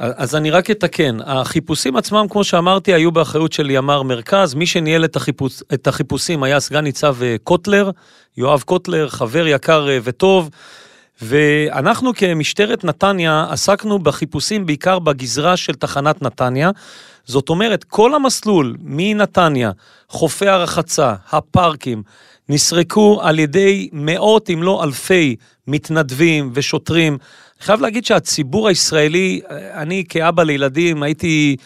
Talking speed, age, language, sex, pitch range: 120 wpm, 40-59, Hebrew, male, 145-185 Hz